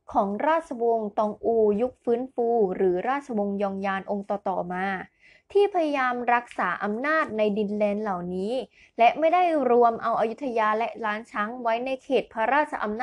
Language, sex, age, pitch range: Thai, female, 20-39, 210-260 Hz